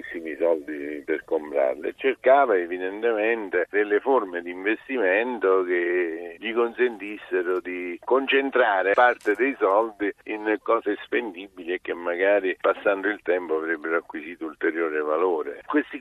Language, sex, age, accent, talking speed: Italian, male, 50-69, native, 120 wpm